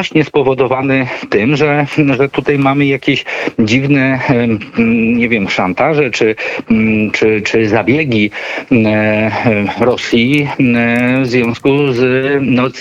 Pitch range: 110-135 Hz